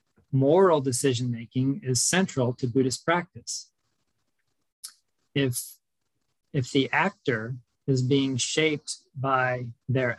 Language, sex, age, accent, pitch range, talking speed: English, male, 40-59, American, 125-145 Hz, 95 wpm